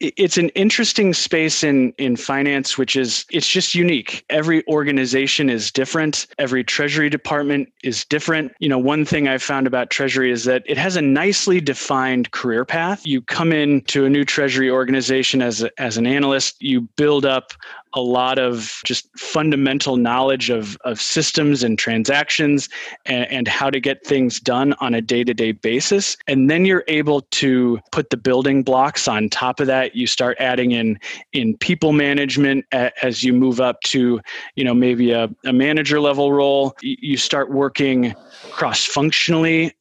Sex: male